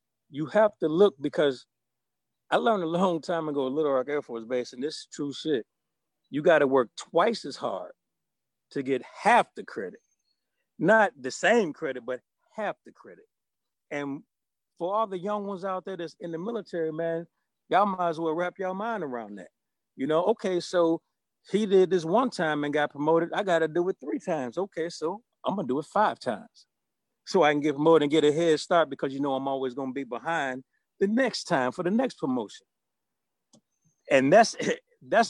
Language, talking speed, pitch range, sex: English, 195 wpm, 145-190 Hz, male